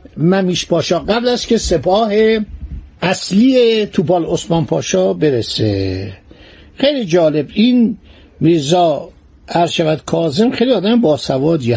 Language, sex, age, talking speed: Persian, male, 60-79, 100 wpm